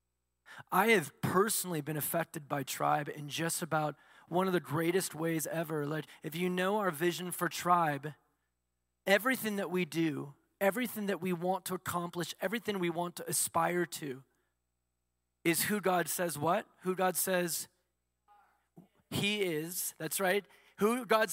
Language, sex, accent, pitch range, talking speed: English, male, American, 150-210 Hz, 150 wpm